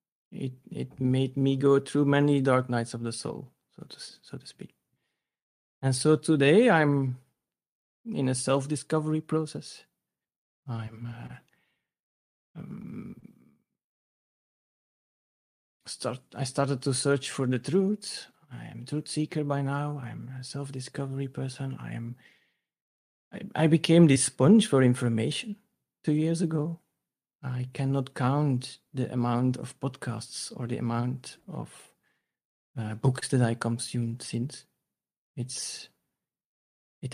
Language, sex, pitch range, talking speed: English, male, 125-150 Hz, 130 wpm